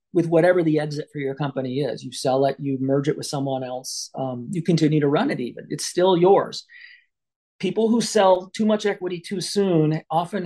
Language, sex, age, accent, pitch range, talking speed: English, male, 40-59, American, 150-185 Hz, 205 wpm